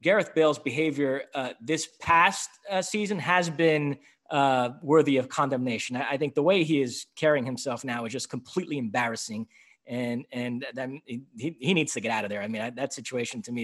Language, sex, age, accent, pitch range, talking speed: English, male, 30-49, American, 140-195 Hz, 205 wpm